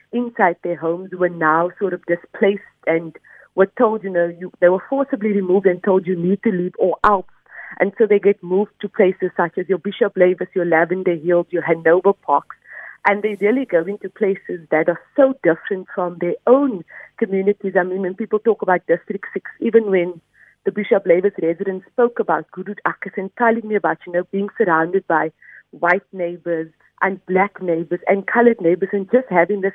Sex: female